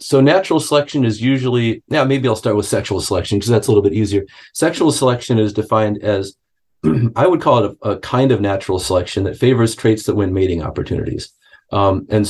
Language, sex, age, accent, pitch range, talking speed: English, male, 40-59, American, 100-120 Hz, 205 wpm